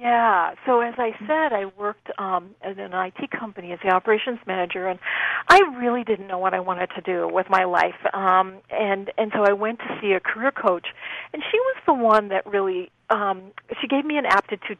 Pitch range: 195-260 Hz